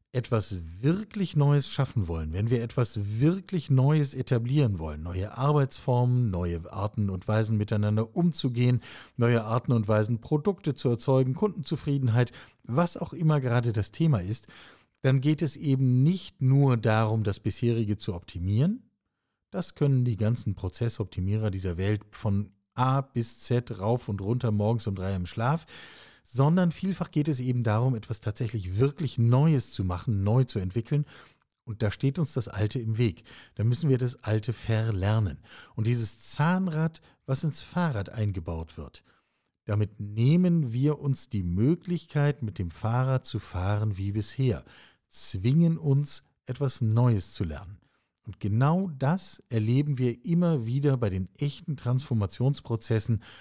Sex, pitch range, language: male, 105-140 Hz, German